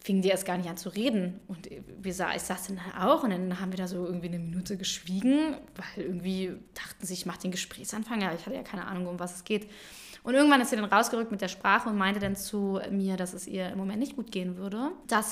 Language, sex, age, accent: German, female, 20-39, German